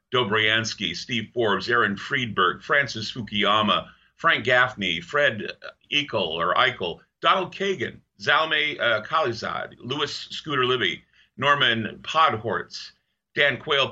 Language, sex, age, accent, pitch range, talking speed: English, male, 50-69, American, 105-130 Hz, 105 wpm